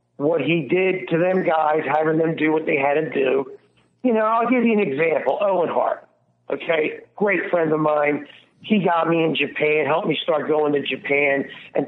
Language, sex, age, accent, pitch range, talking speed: English, male, 50-69, American, 150-230 Hz, 200 wpm